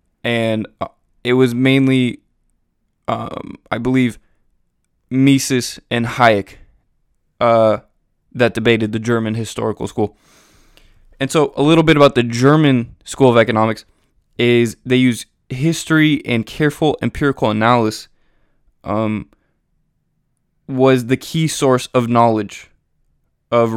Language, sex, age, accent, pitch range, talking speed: English, male, 20-39, American, 110-135 Hz, 110 wpm